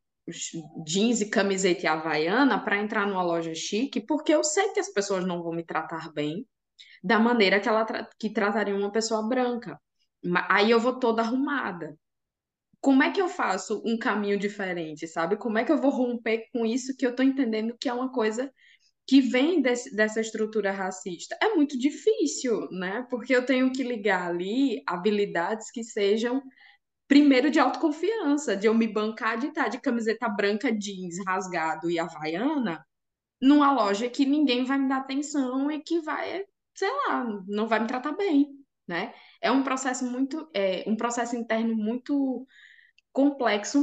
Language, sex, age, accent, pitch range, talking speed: Portuguese, female, 10-29, Brazilian, 195-265 Hz, 175 wpm